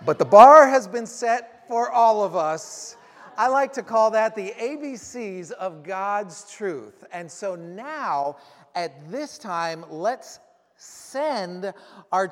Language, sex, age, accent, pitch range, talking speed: English, male, 40-59, American, 200-265 Hz, 140 wpm